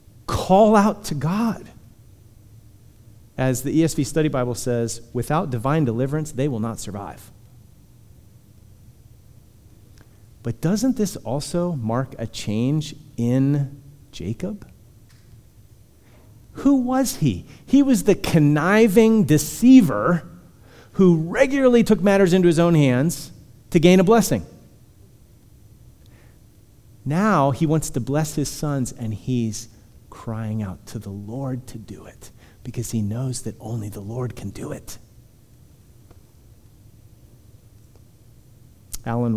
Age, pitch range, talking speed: 40-59, 110-140 Hz, 115 wpm